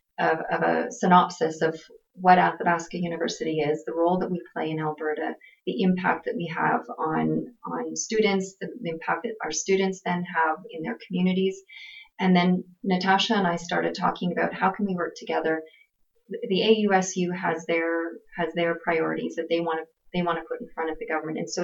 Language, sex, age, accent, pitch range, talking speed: English, female, 30-49, American, 165-195 Hz, 190 wpm